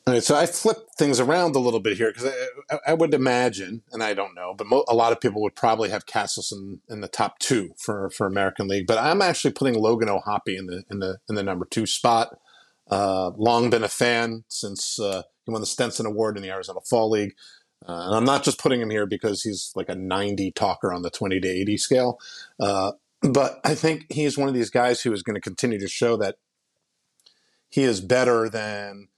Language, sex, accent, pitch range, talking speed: English, male, American, 100-120 Hz, 230 wpm